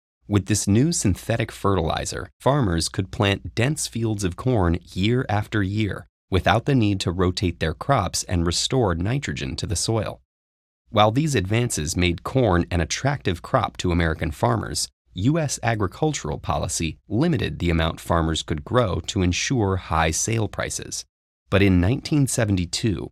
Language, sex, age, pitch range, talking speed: English, male, 30-49, 85-115 Hz, 145 wpm